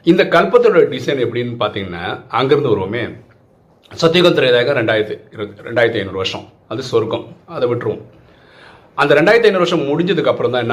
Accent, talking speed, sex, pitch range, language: native, 130 wpm, male, 120-175 Hz, Tamil